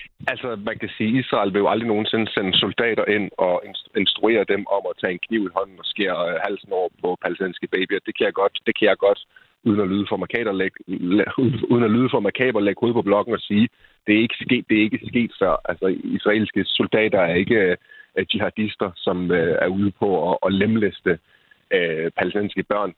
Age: 30-49